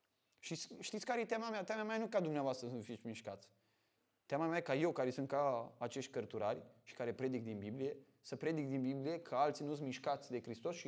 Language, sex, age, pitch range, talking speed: Romanian, male, 20-39, 140-195 Hz, 230 wpm